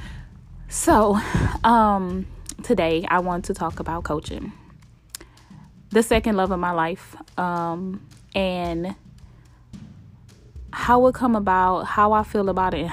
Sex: female